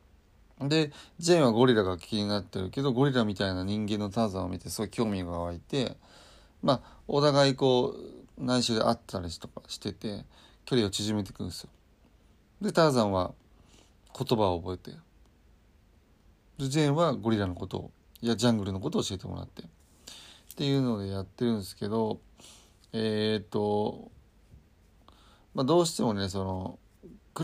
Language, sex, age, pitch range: Japanese, male, 30-49, 95-120 Hz